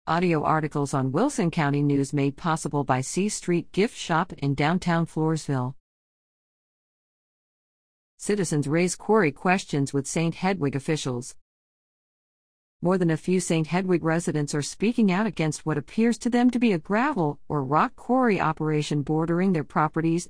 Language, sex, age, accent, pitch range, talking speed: English, female, 50-69, American, 140-190 Hz, 150 wpm